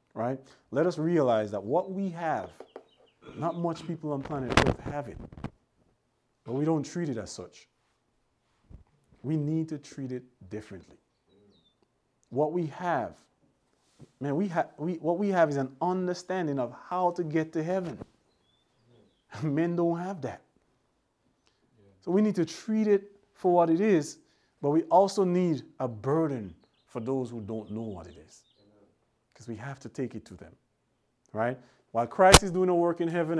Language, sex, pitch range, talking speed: English, male, 105-170 Hz, 160 wpm